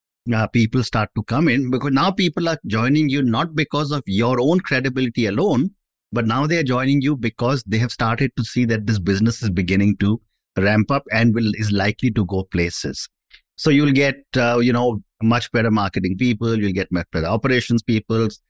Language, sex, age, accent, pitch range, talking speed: English, male, 50-69, Indian, 110-130 Hz, 200 wpm